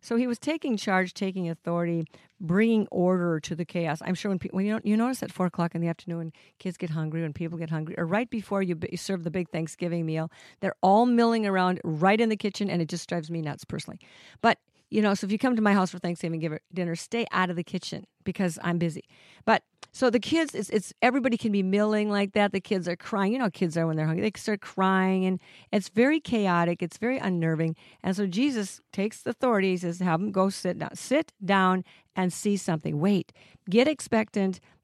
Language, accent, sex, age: English, American, female, 50-69